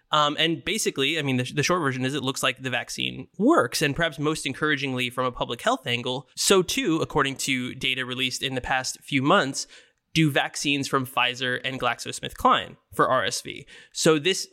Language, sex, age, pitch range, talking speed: English, male, 20-39, 130-155 Hz, 190 wpm